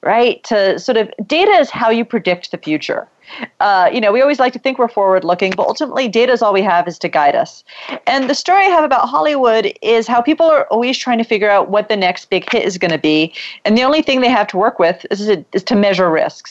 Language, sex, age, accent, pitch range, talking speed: English, female, 40-59, American, 185-255 Hz, 265 wpm